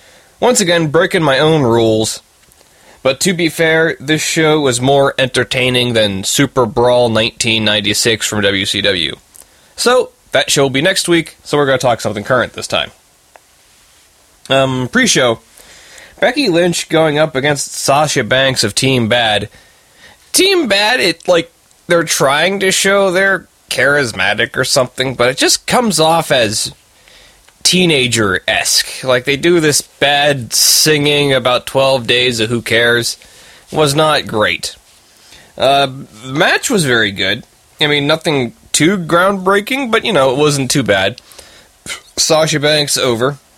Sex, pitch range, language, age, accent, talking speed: male, 125-170 Hz, English, 20-39, American, 145 wpm